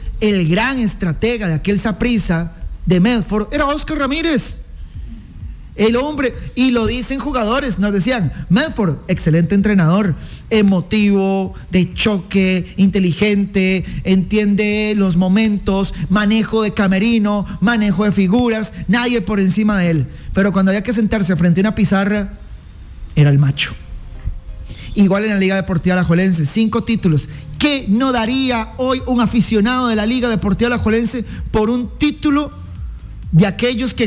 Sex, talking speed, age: male, 135 wpm, 40-59